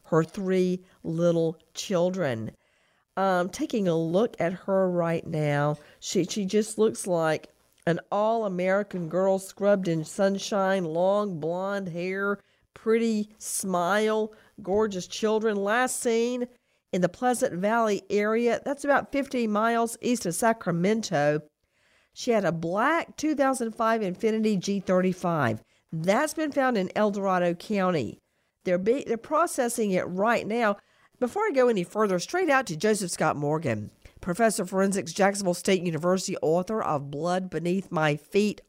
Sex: female